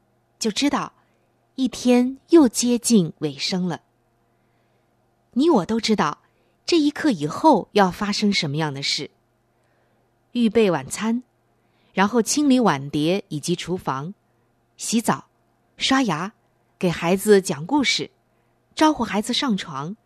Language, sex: Chinese, female